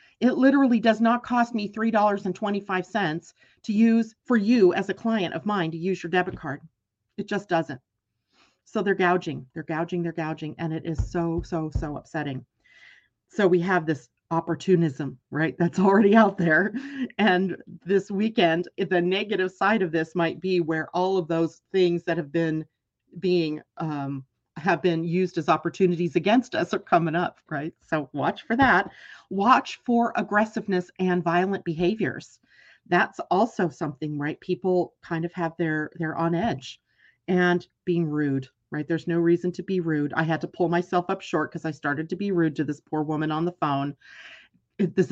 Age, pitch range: 40-59, 160-195 Hz